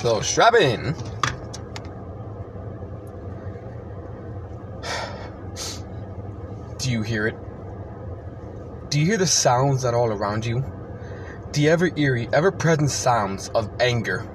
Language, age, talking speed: English, 20-39, 95 wpm